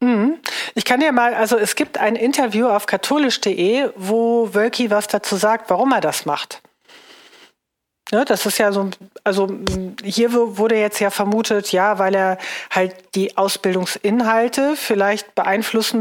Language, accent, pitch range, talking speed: German, German, 190-235 Hz, 145 wpm